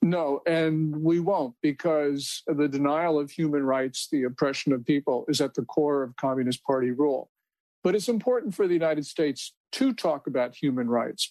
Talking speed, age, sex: 180 wpm, 50-69, male